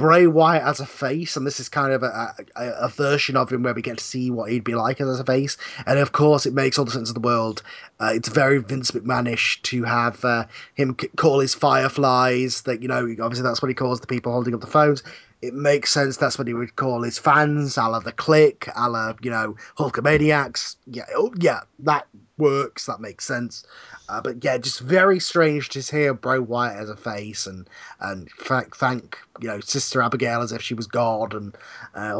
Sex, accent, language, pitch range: male, British, English, 115-140 Hz